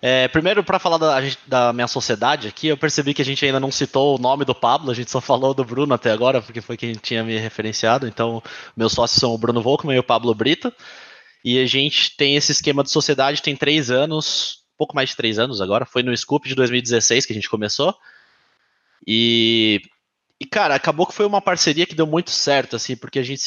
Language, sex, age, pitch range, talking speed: Portuguese, male, 20-39, 120-155 Hz, 225 wpm